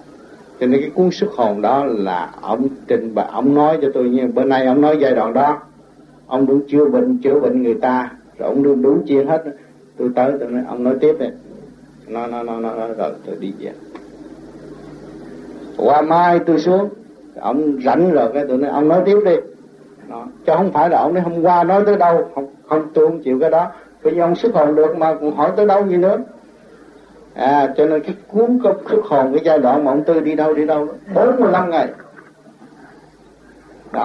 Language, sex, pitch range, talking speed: Vietnamese, male, 130-165 Hz, 210 wpm